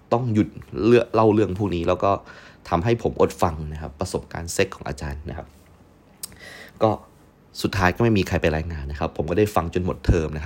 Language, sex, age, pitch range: Thai, male, 20-39, 80-110 Hz